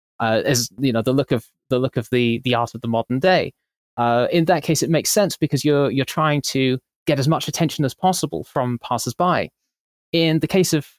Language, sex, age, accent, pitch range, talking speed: English, male, 20-39, British, 130-170 Hz, 225 wpm